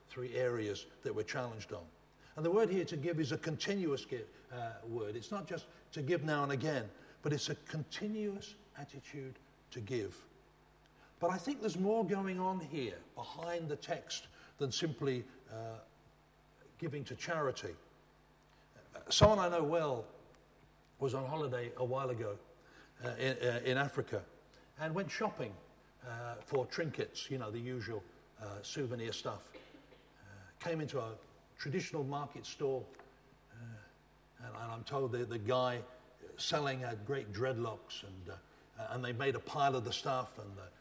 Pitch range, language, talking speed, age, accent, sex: 120-150 Hz, English, 155 wpm, 60-79, British, male